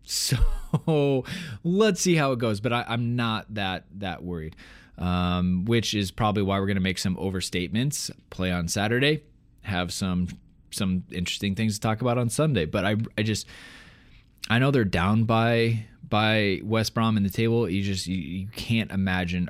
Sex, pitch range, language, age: male, 100-120 Hz, English, 20-39